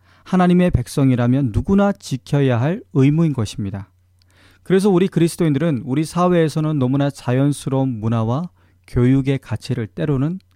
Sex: male